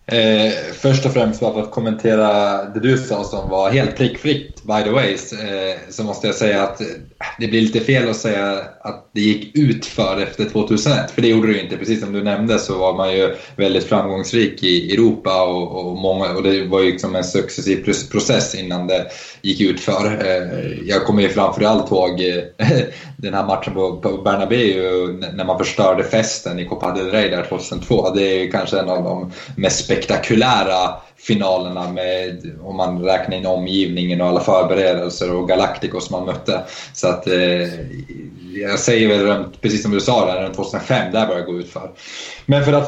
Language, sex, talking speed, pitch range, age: Swedish, male, 195 wpm, 95-110 Hz, 20-39